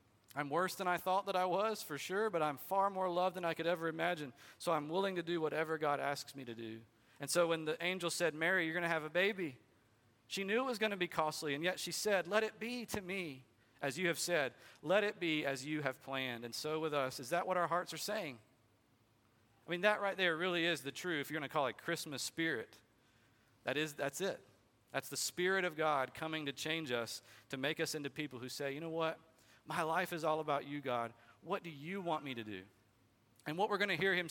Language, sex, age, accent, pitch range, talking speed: English, male, 40-59, American, 125-180 Hz, 250 wpm